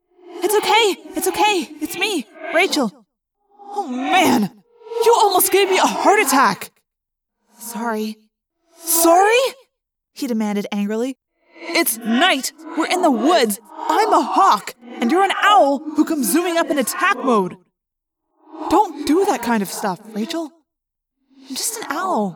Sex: female